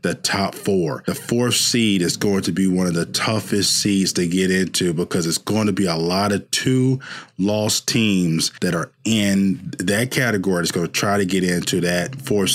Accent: American